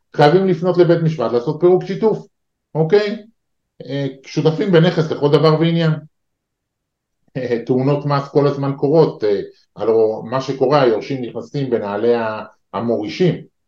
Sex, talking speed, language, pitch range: male, 110 wpm, Hebrew, 110-160 Hz